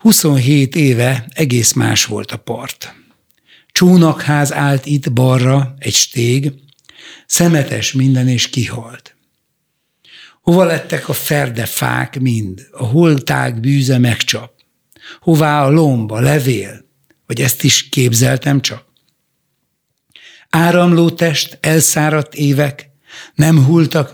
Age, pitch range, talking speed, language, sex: 60-79, 125-150 Hz, 105 wpm, Hungarian, male